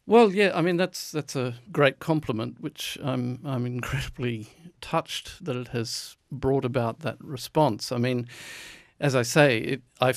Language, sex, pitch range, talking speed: English, male, 120-140 Hz, 165 wpm